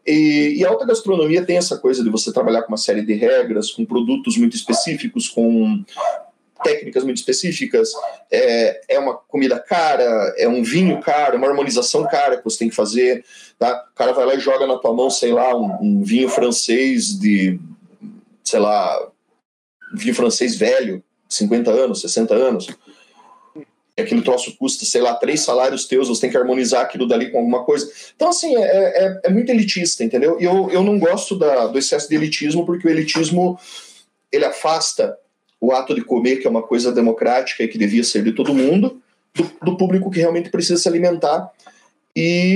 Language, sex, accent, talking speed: Portuguese, male, Brazilian, 190 wpm